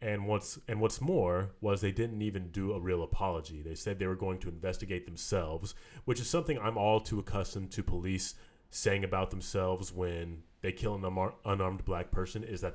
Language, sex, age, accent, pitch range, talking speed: English, male, 30-49, American, 90-110 Hz, 200 wpm